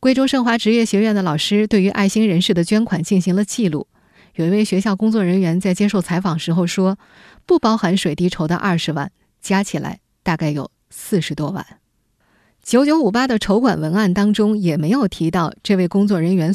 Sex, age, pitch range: female, 20-39, 175-220 Hz